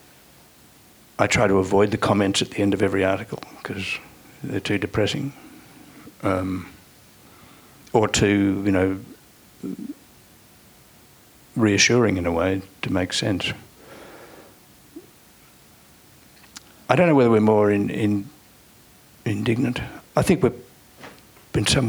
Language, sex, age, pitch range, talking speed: English, male, 60-79, 100-125 Hz, 115 wpm